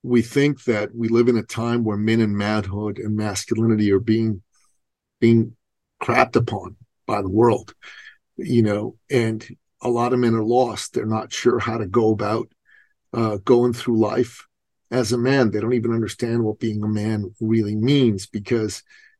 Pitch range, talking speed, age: 110-125 Hz, 175 wpm, 50-69